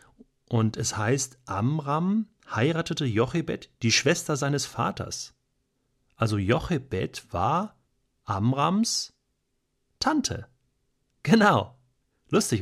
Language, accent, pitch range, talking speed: German, German, 110-135 Hz, 80 wpm